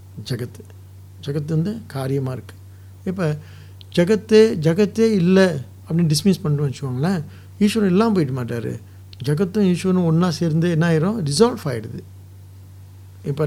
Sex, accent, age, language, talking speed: male, Indian, 60-79, English, 125 wpm